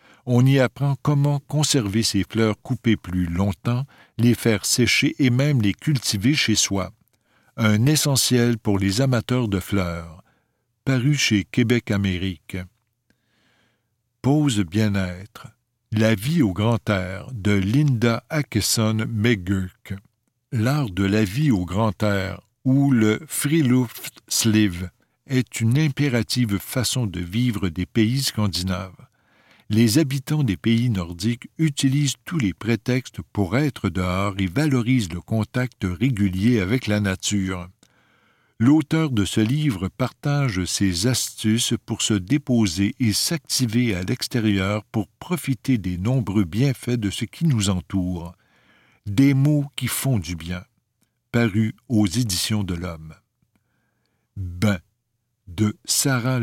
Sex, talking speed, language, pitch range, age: male, 125 wpm, French, 100-130 Hz, 60-79